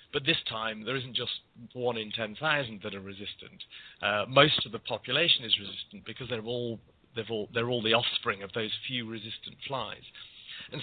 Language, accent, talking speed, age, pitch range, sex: English, British, 190 wpm, 30-49, 105-130 Hz, male